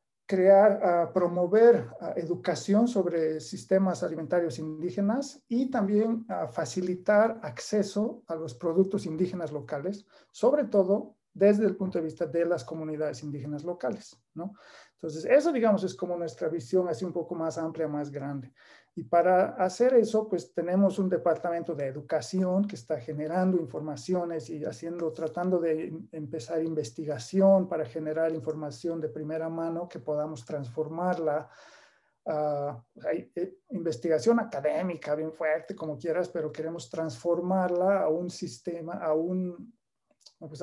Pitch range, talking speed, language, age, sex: 155-190 Hz, 135 wpm, Portuguese, 50-69, male